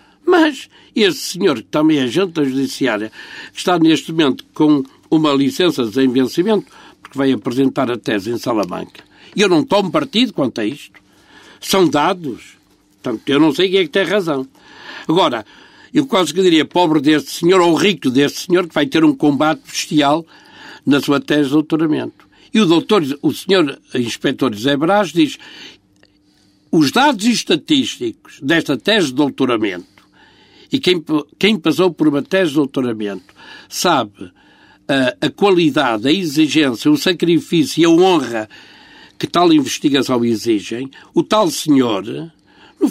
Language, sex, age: Portuguese, male, 60-79